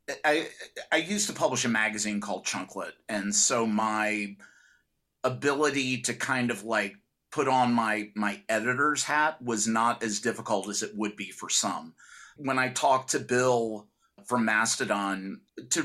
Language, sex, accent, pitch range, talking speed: English, male, American, 120-150 Hz, 155 wpm